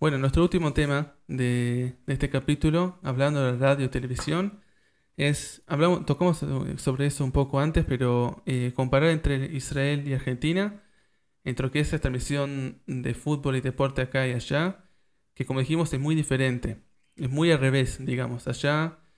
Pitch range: 125-150 Hz